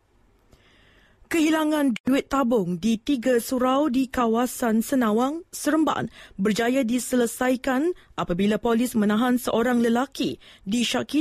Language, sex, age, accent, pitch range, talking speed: English, female, 20-39, Malaysian, 220-270 Hz, 95 wpm